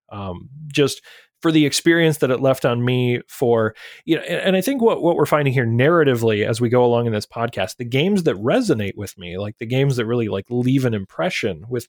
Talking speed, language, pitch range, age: 230 wpm, English, 120-155 Hz, 30-49